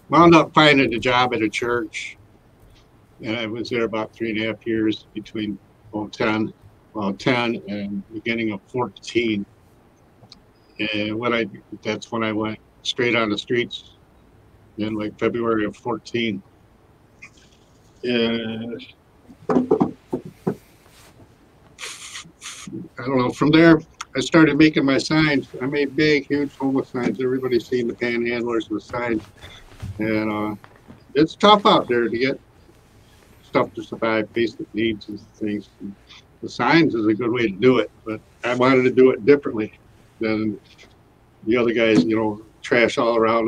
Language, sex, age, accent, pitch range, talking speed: English, male, 60-79, American, 105-120 Hz, 150 wpm